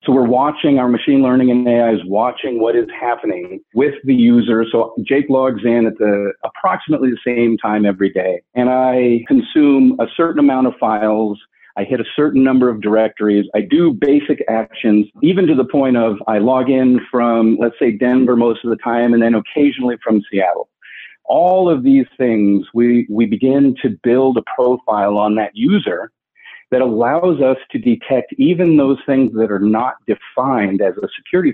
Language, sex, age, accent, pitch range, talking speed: English, male, 40-59, American, 110-135 Hz, 185 wpm